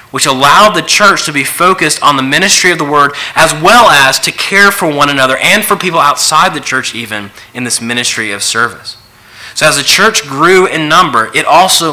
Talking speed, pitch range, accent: 210 wpm, 110-140 Hz, American